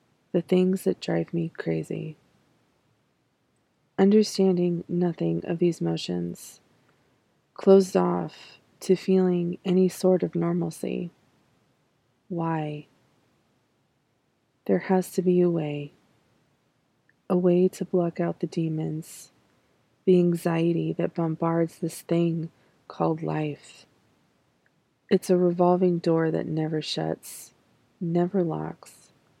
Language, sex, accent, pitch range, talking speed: English, female, American, 155-180 Hz, 100 wpm